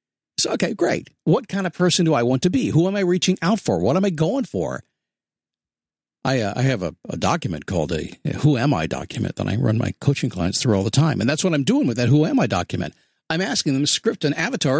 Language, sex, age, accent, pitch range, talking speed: English, male, 50-69, American, 135-180 Hz, 260 wpm